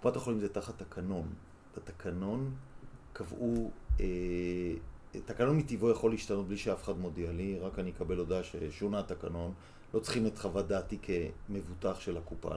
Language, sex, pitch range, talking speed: Hebrew, male, 90-110 Hz, 135 wpm